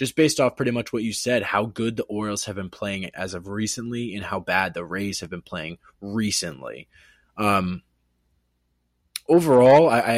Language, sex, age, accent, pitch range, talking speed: English, male, 20-39, American, 105-125 Hz, 185 wpm